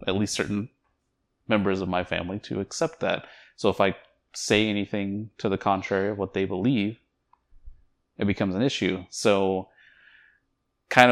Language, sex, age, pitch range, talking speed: English, male, 20-39, 95-115 Hz, 150 wpm